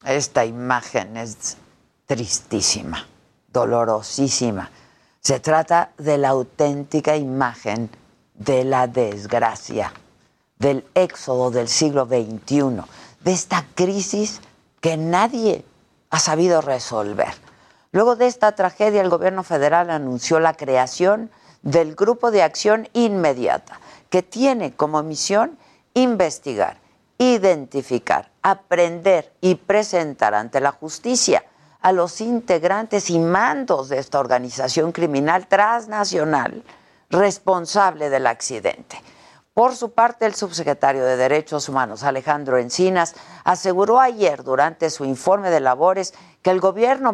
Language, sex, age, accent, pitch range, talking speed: Spanish, female, 50-69, Mexican, 135-195 Hz, 110 wpm